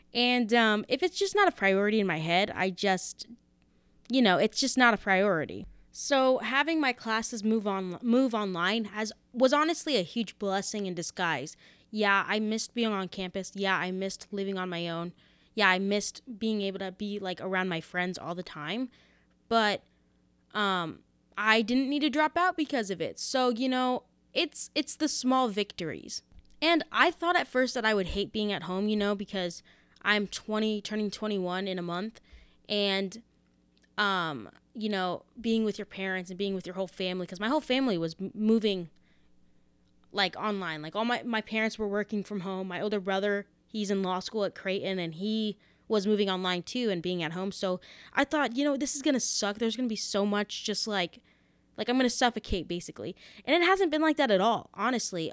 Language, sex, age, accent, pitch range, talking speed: English, female, 20-39, American, 185-235 Hz, 200 wpm